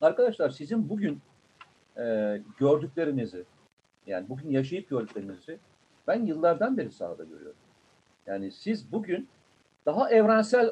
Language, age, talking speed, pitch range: Turkish, 50-69, 105 wpm, 150-210 Hz